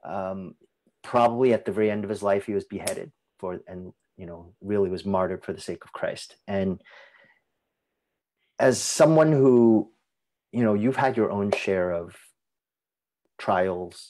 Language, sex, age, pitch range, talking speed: English, male, 30-49, 95-120 Hz, 160 wpm